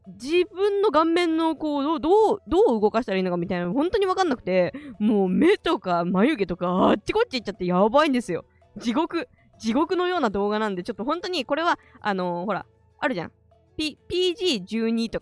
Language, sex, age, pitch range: Japanese, female, 20-39, 200-295 Hz